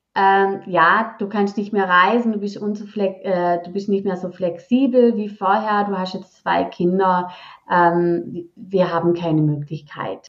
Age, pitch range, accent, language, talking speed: 30-49, 185-230 Hz, German, German, 150 wpm